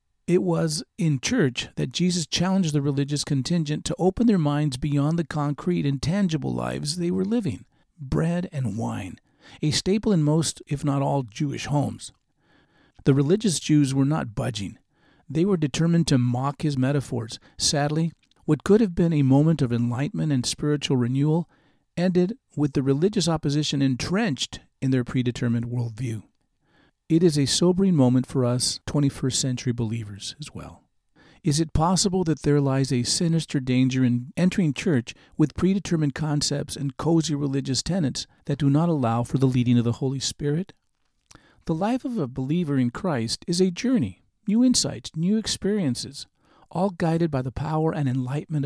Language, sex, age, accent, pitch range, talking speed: English, male, 50-69, American, 130-170 Hz, 165 wpm